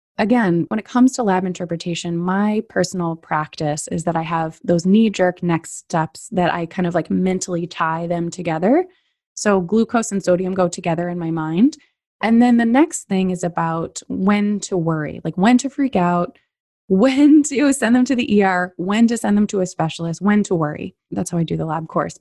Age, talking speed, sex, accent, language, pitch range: 20-39, 205 wpm, female, American, English, 170-220 Hz